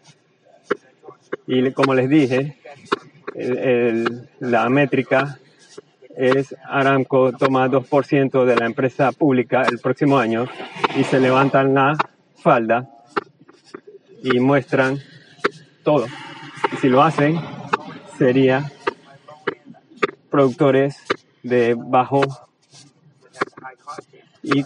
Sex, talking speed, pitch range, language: male, 90 wpm, 125-140 Hz, Spanish